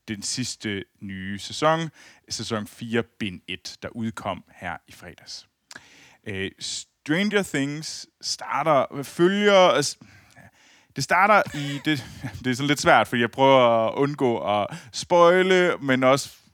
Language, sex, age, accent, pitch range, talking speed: Danish, male, 30-49, native, 105-140 Hz, 135 wpm